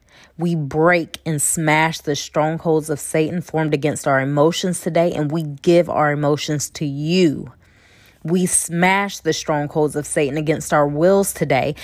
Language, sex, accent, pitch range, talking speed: English, female, American, 145-175 Hz, 150 wpm